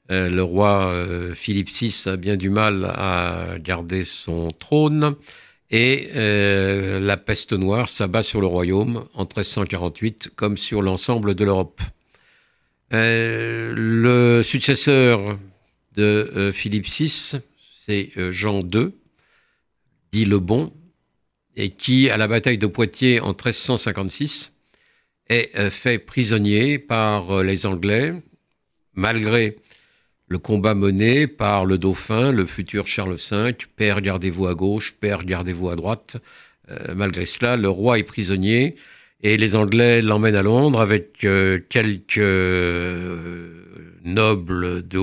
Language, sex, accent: French, male, French